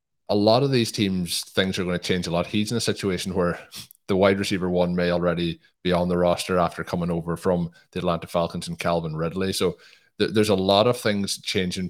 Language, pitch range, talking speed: English, 85-95 Hz, 220 wpm